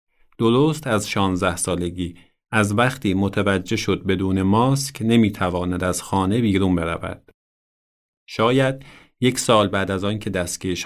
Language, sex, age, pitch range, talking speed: Persian, male, 30-49, 95-125 Hz, 125 wpm